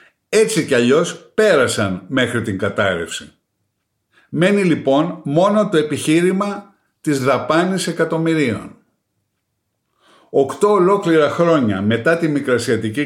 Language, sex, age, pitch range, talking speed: Greek, male, 60-79, 120-170 Hz, 95 wpm